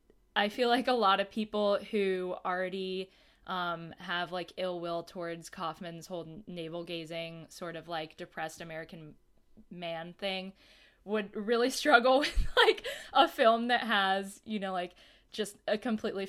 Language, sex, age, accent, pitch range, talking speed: English, female, 10-29, American, 175-215 Hz, 145 wpm